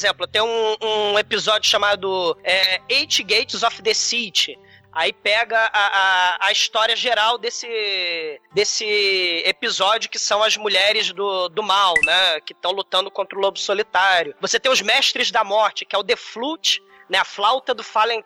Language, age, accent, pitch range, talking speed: Portuguese, 20-39, Brazilian, 200-280 Hz, 170 wpm